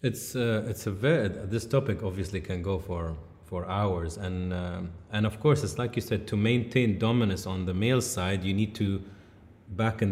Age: 30-49